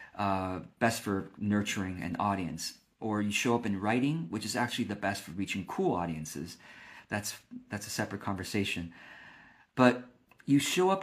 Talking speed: 165 wpm